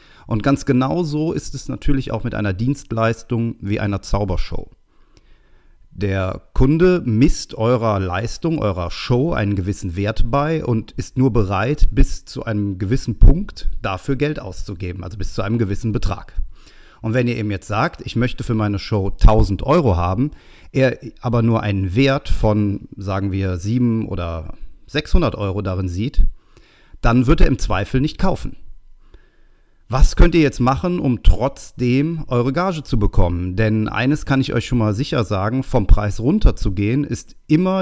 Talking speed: 165 wpm